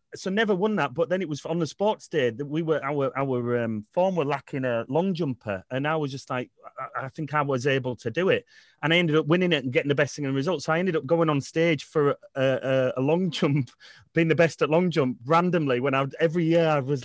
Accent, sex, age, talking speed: British, male, 30-49, 270 wpm